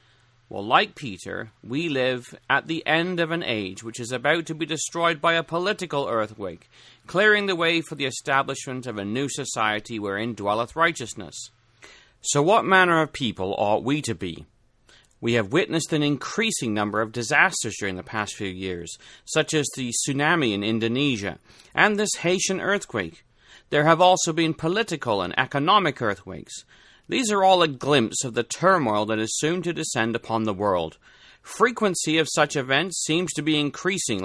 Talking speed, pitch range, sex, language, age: 170 wpm, 115-170 Hz, male, English, 30-49